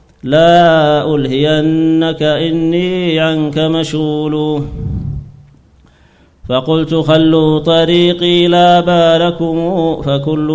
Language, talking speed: Arabic, 65 wpm